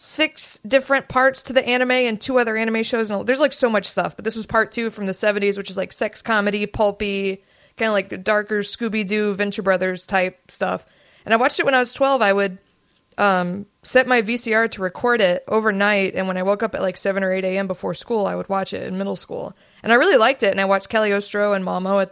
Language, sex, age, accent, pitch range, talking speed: English, female, 20-39, American, 190-225 Hz, 245 wpm